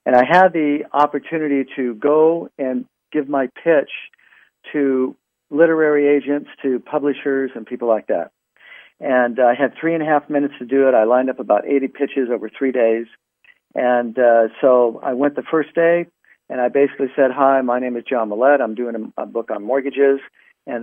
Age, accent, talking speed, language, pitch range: 50-69, American, 195 wpm, English, 120-145 Hz